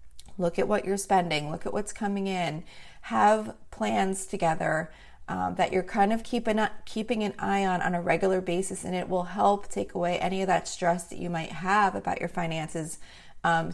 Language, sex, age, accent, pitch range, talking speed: English, female, 30-49, American, 180-225 Hz, 195 wpm